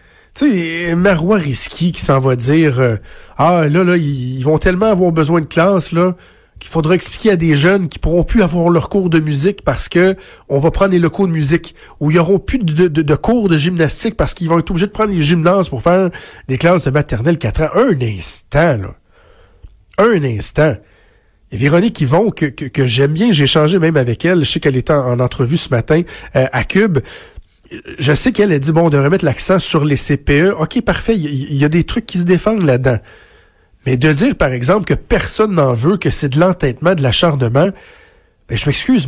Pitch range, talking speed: 140-180 Hz, 220 wpm